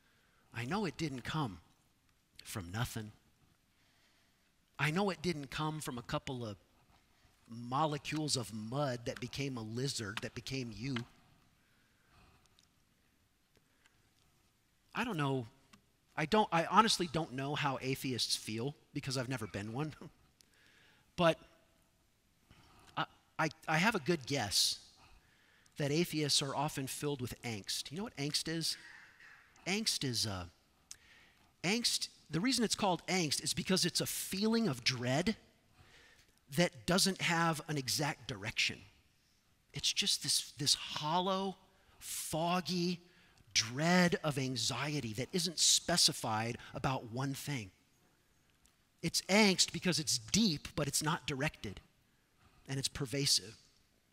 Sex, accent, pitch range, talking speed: male, American, 120-165 Hz, 125 wpm